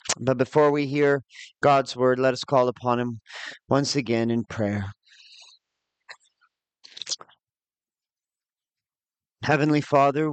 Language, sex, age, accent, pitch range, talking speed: English, male, 40-59, American, 125-150 Hz, 100 wpm